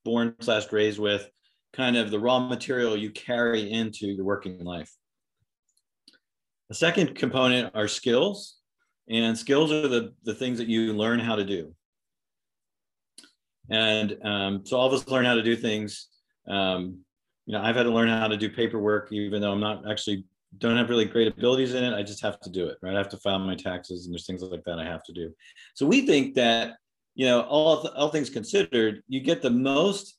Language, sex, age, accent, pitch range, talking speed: English, male, 40-59, American, 100-125 Hz, 205 wpm